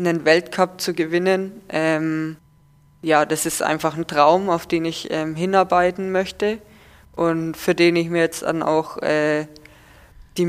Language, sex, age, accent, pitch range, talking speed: German, female, 20-39, German, 160-180 Hz, 155 wpm